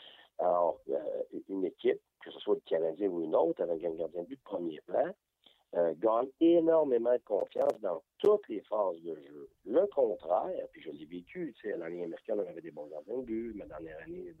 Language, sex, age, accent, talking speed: French, male, 50-69, French, 220 wpm